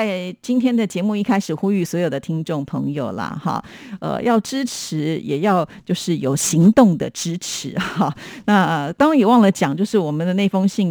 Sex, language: female, Chinese